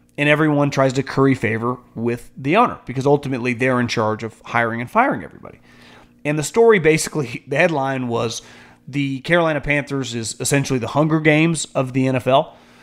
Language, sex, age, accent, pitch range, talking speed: English, male, 30-49, American, 120-170 Hz, 175 wpm